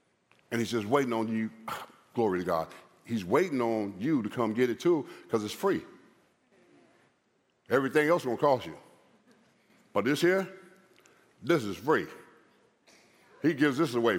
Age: 50-69